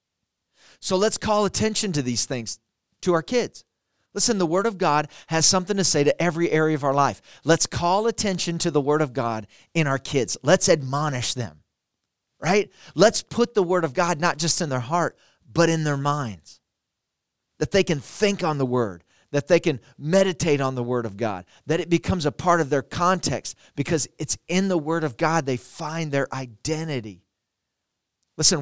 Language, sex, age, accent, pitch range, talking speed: English, male, 40-59, American, 130-180 Hz, 190 wpm